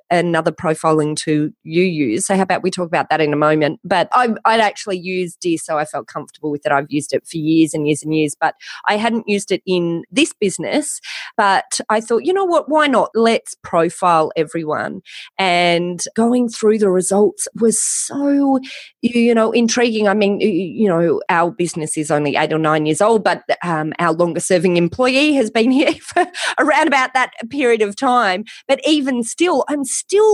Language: English